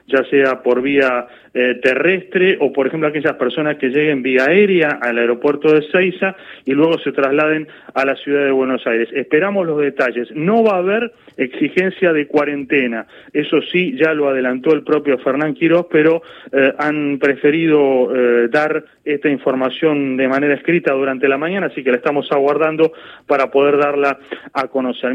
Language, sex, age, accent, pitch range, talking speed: Spanish, male, 30-49, Argentinian, 135-170 Hz, 170 wpm